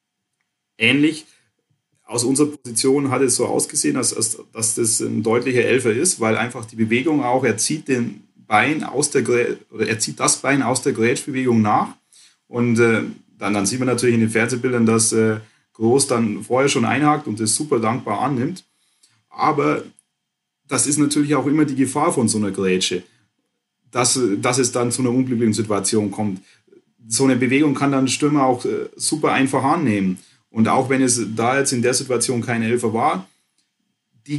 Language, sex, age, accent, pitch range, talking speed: German, male, 30-49, German, 110-130 Hz, 180 wpm